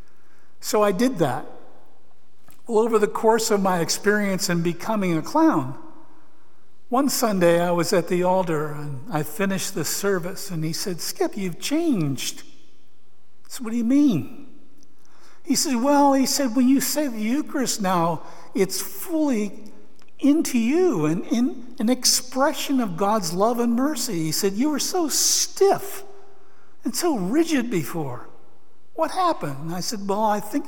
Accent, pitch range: American, 175-265 Hz